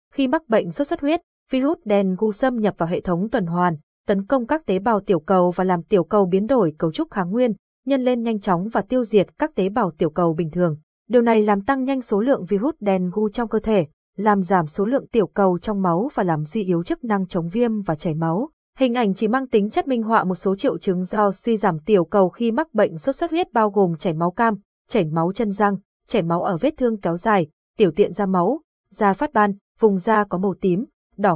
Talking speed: 245 wpm